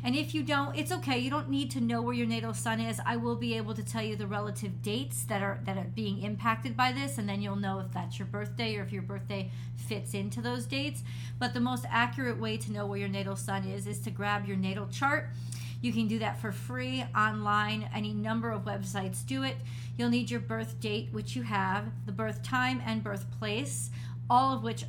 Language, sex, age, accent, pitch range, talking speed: English, female, 40-59, American, 105-120 Hz, 235 wpm